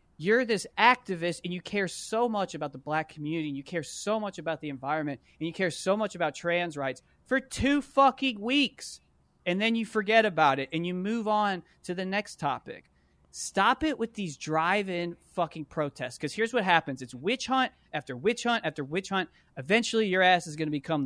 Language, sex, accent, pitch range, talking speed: English, male, American, 150-210 Hz, 210 wpm